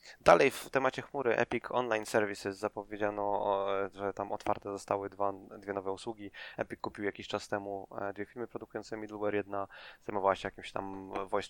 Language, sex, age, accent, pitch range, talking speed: Polish, male, 20-39, native, 95-105 Hz, 160 wpm